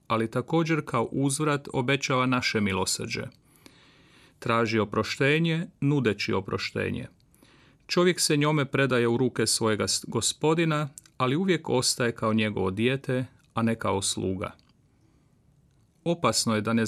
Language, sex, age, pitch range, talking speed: Croatian, male, 40-59, 115-140 Hz, 115 wpm